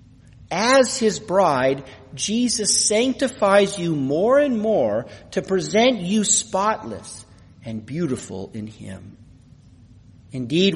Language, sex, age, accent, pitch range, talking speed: English, male, 40-59, American, 115-190 Hz, 100 wpm